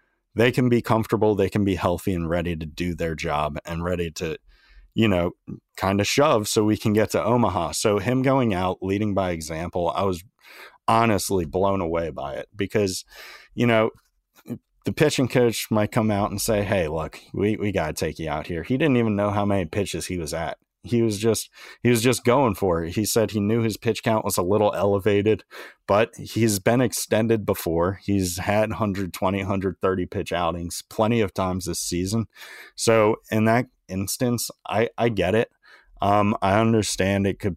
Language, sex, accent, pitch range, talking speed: English, male, American, 90-110 Hz, 195 wpm